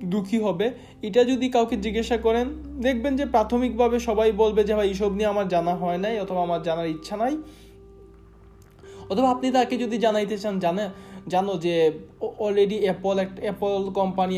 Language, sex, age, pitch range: Bengali, male, 20-39, 185-235 Hz